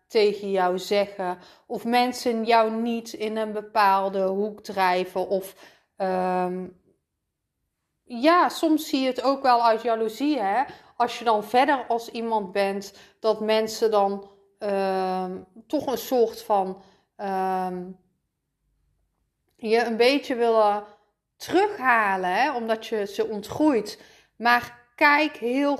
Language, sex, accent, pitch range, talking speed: Dutch, female, Dutch, 205-250 Hz, 125 wpm